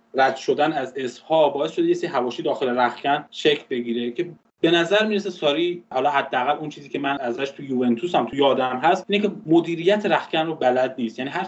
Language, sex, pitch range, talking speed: Persian, male, 130-160 Hz, 205 wpm